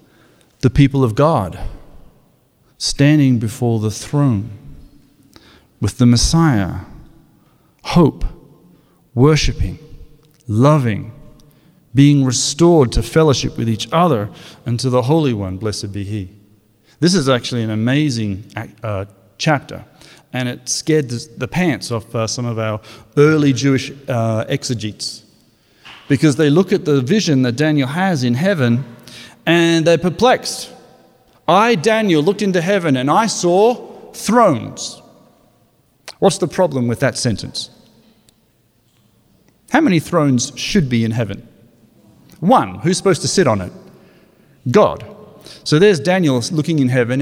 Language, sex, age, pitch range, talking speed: English, male, 40-59, 115-155 Hz, 125 wpm